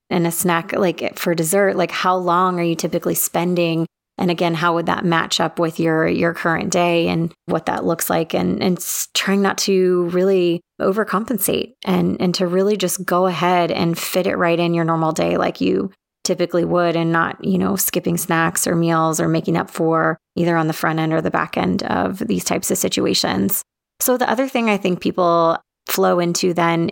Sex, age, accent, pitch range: female, 30-49, American, 165-185 Hz